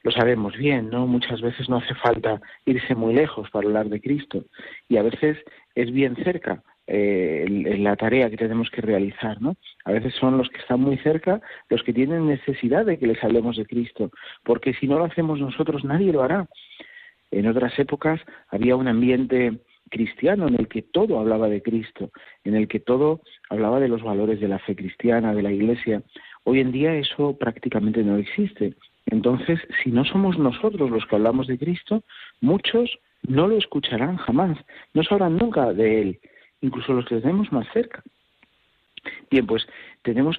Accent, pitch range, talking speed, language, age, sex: Spanish, 110-150 Hz, 180 wpm, Spanish, 50-69, male